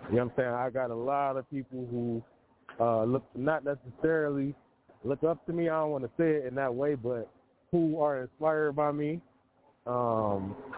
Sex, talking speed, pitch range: male, 185 wpm, 120-145 Hz